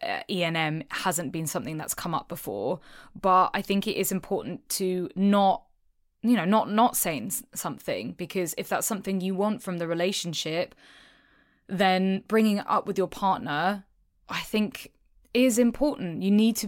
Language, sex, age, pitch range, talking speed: English, female, 20-39, 180-215 Hz, 160 wpm